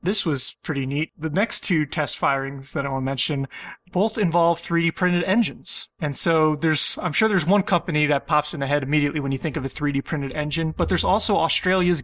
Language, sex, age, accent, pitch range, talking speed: English, male, 30-49, American, 145-175 Hz, 225 wpm